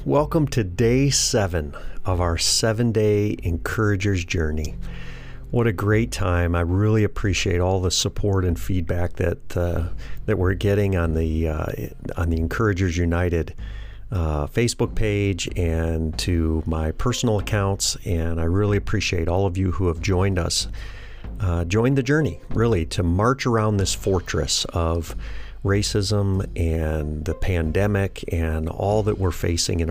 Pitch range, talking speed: 85-110 Hz, 145 wpm